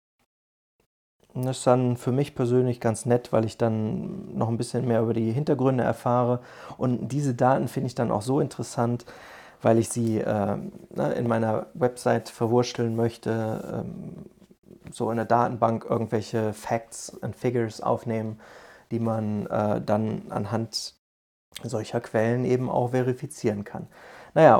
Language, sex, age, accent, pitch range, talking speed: German, male, 30-49, German, 115-130 Hz, 145 wpm